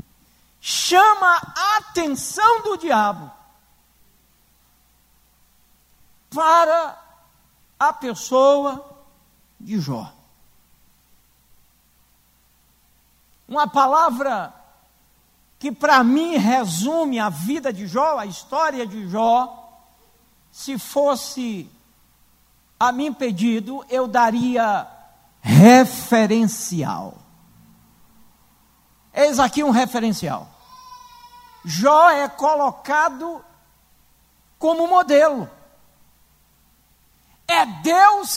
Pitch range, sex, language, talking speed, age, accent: 230-340 Hz, male, Portuguese, 65 wpm, 60-79, Brazilian